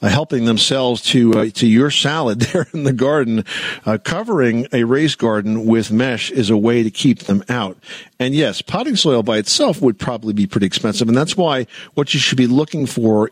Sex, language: male, English